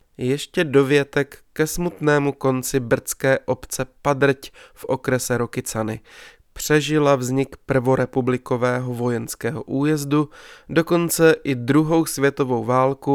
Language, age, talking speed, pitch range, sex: Czech, 20-39, 95 wpm, 125-145 Hz, male